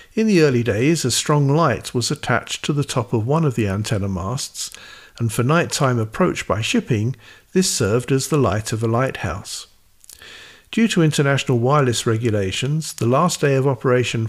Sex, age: male, 50-69